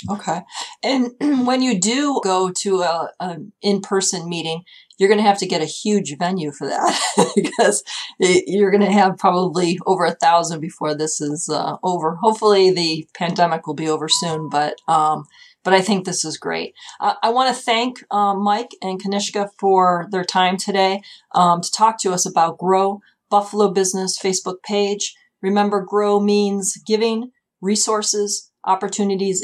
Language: Italian